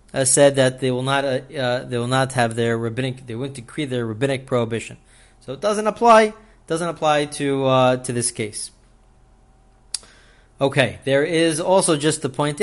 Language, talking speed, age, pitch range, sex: English, 175 wpm, 30-49, 125-165 Hz, male